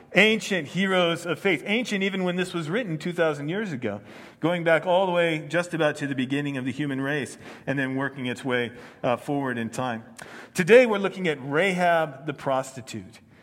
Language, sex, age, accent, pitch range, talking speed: English, male, 40-59, American, 135-180 Hz, 190 wpm